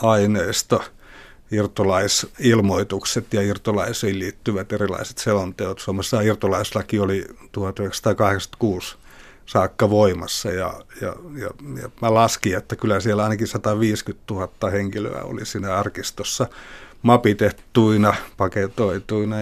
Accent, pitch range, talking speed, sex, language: native, 100-115 Hz, 95 wpm, male, Finnish